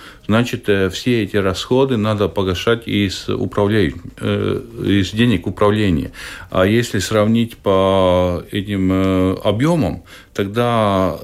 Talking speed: 90 wpm